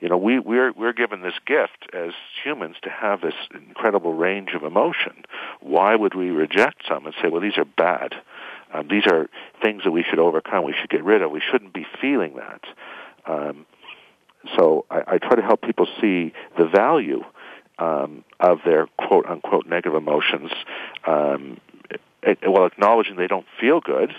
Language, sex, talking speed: English, male, 170 wpm